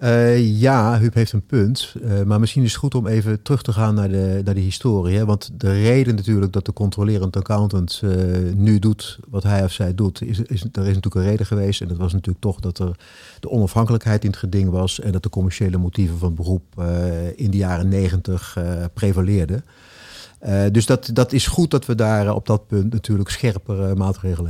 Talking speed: 210 wpm